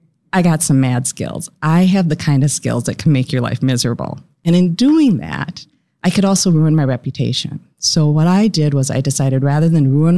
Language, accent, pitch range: English, American, 130-160 Hz